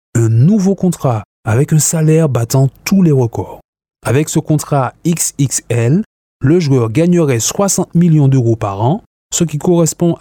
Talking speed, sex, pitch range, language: 145 wpm, male, 120-165 Hz, French